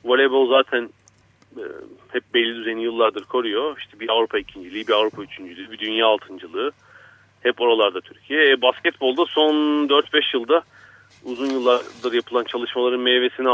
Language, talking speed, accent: Turkish, 135 wpm, native